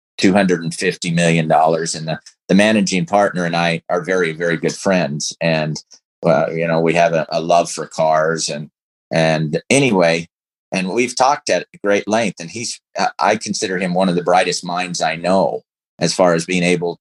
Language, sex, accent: English, male, American